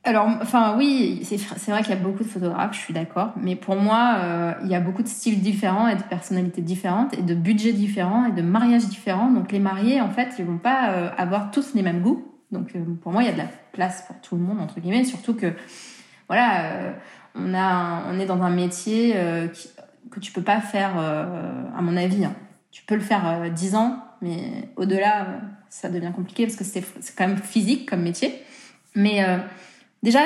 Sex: female